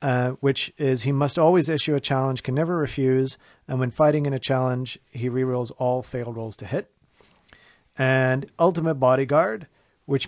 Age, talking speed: 40-59, 170 wpm